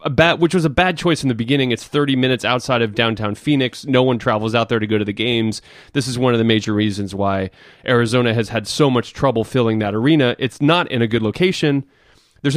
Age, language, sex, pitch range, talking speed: 20-39, English, male, 110-145 Hz, 245 wpm